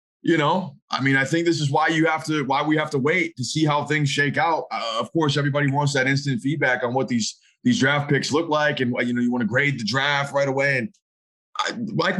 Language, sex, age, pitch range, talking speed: English, male, 20-39, 140-175 Hz, 255 wpm